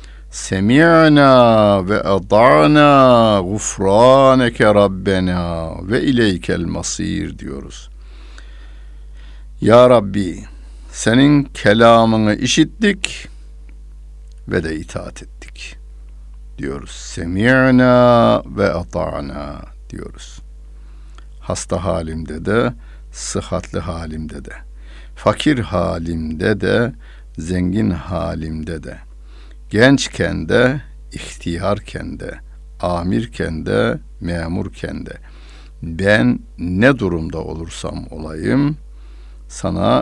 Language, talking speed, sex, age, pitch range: Turkish, 75 wpm, male, 60-79, 70-110 Hz